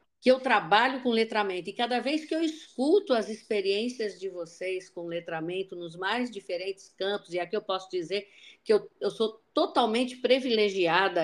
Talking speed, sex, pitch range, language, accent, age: 170 wpm, female, 195-290 Hz, Portuguese, Brazilian, 50-69